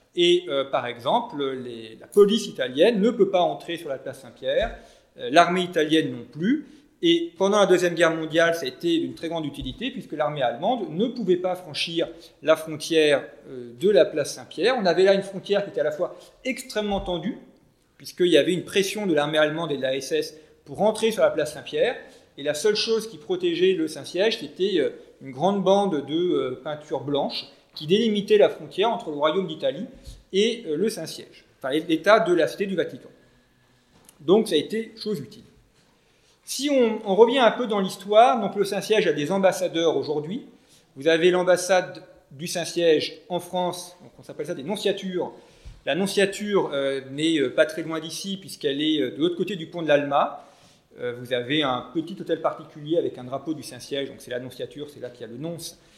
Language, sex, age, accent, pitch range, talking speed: French, male, 40-59, French, 155-215 Hz, 195 wpm